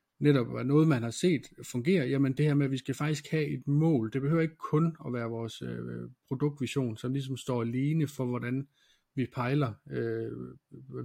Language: Danish